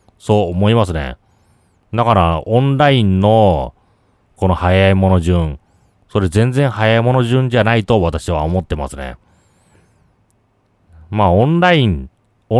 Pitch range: 90-115 Hz